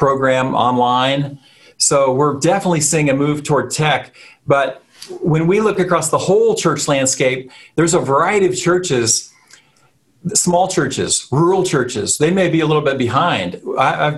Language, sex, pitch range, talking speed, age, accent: English, male, 130-160 Hz, 150 wpm, 40-59, American